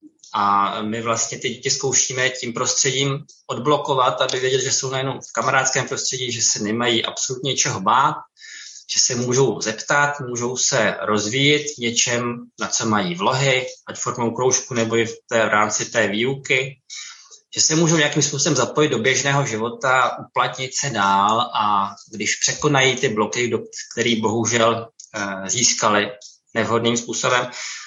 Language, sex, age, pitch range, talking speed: Czech, male, 20-39, 115-135 Hz, 150 wpm